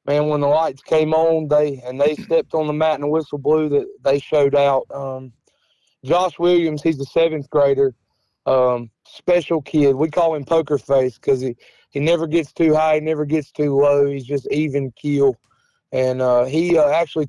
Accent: American